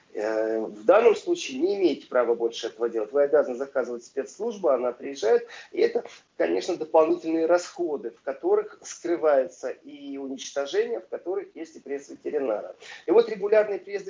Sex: male